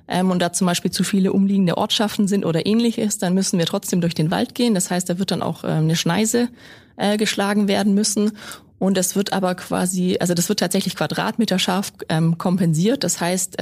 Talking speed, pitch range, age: 195 wpm, 175-210 Hz, 20-39